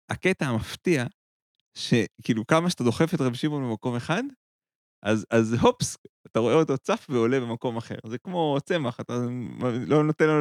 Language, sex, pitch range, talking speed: Hebrew, male, 110-140 Hz, 160 wpm